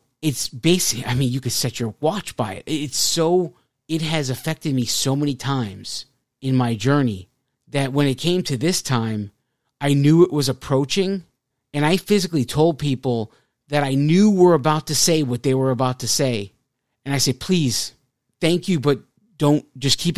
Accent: American